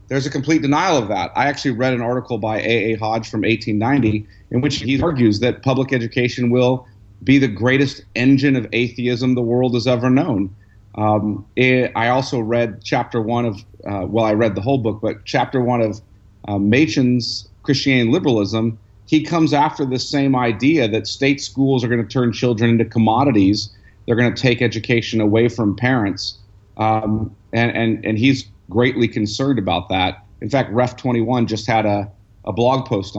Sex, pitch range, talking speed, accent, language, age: male, 105-135 Hz, 185 wpm, American, English, 40-59